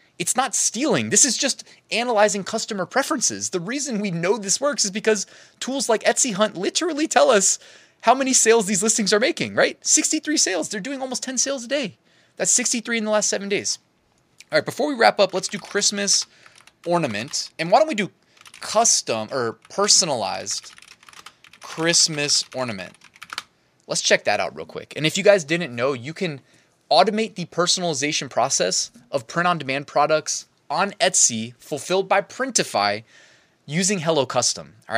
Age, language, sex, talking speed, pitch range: 20-39, English, male, 170 wpm, 145-220 Hz